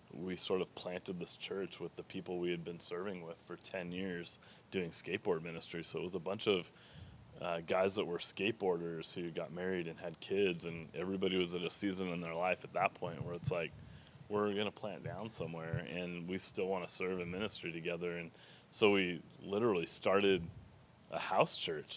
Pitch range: 85-100 Hz